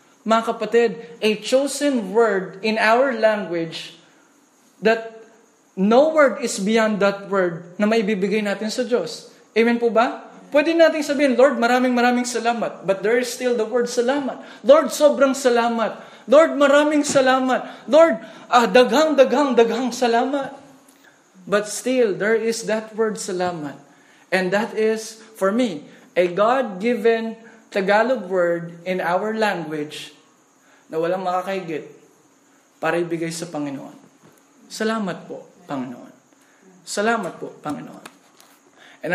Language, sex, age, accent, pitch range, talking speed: Filipino, male, 20-39, native, 195-250 Hz, 125 wpm